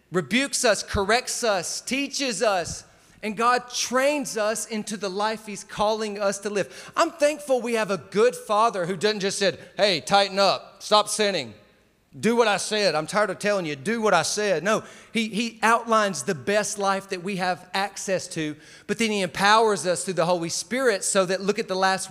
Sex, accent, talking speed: male, American, 200 wpm